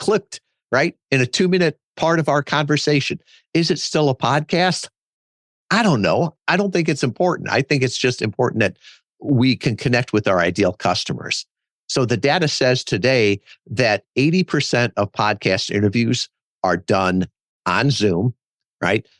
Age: 50-69